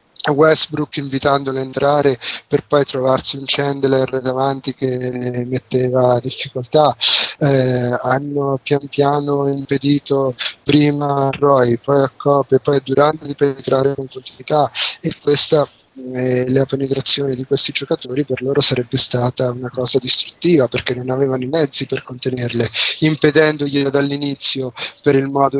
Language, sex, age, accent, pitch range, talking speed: Italian, male, 20-39, native, 130-145 Hz, 140 wpm